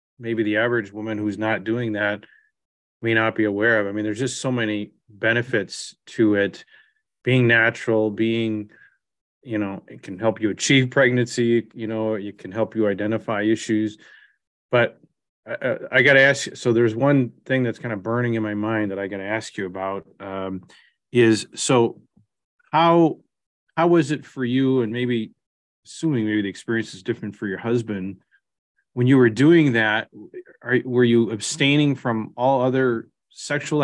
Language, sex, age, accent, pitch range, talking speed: English, male, 30-49, American, 105-130 Hz, 175 wpm